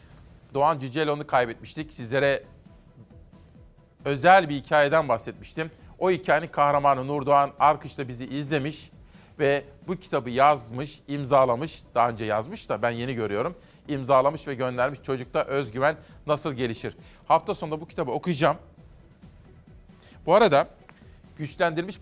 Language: Turkish